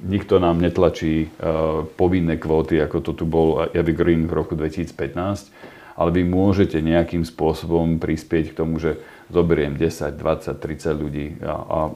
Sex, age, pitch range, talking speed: male, 40-59, 80-85 Hz, 145 wpm